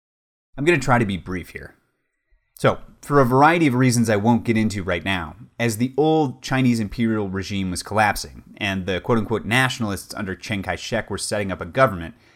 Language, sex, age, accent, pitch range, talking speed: English, male, 30-49, American, 95-130 Hz, 195 wpm